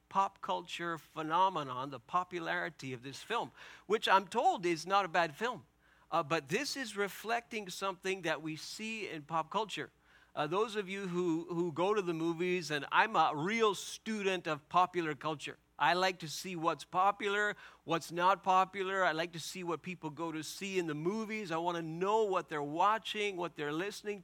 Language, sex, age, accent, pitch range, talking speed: English, male, 50-69, American, 160-200 Hz, 190 wpm